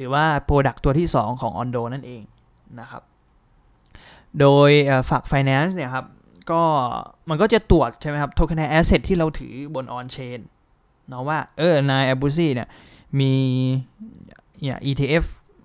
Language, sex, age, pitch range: Thai, male, 20-39, 125-155 Hz